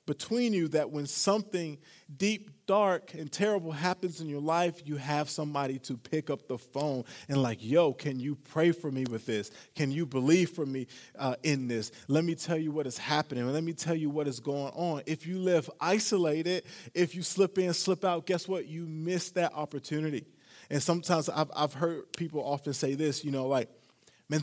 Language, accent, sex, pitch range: English, American, male, 135-170 Hz